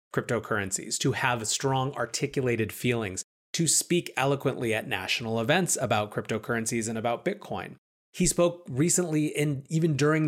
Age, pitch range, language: 30-49, 115-140 Hz, English